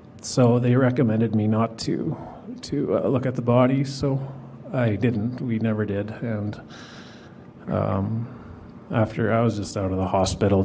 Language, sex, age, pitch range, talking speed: English, male, 40-59, 110-120 Hz, 160 wpm